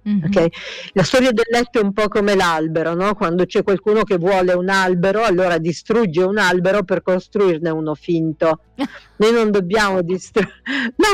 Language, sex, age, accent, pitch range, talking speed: Italian, female, 50-69, native, 170-225 Hz, 165 wpm